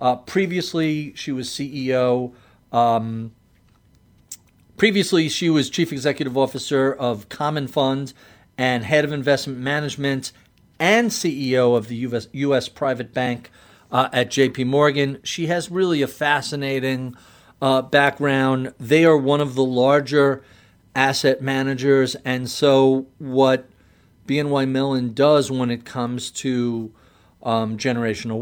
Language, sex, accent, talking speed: English, male, American, 125 wpm